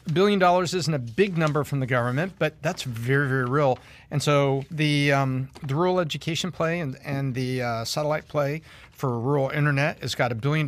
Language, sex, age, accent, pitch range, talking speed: English, male, 50-69, American, 130-160 Hz, 195 wpm